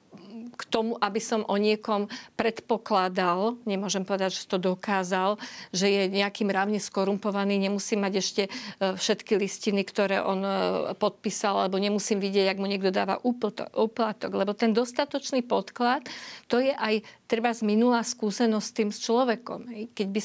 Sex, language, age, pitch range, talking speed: female, Slovak, 50-69, 200-230 Hz, 145 wpm